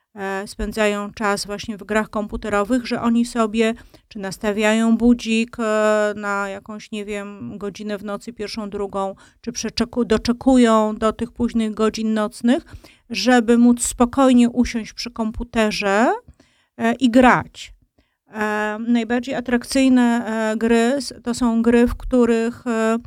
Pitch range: 210-235 Hz